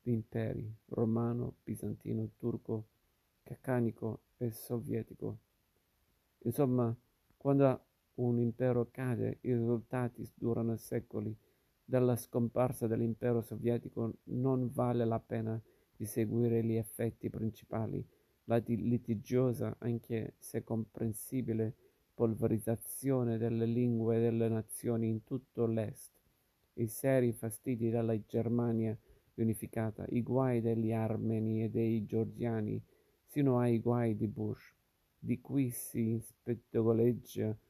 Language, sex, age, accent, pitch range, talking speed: Italian, male, 50-69, native, 110-120 Hz, 105 wpm